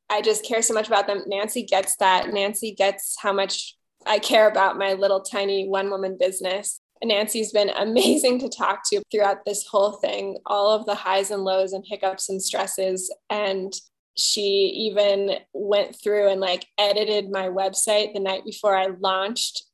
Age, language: 20-39, English